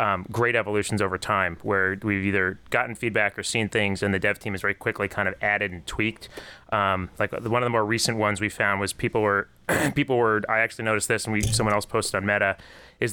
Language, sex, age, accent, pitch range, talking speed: English, male, 30-49, American, 100-125 Hz, 240 wpm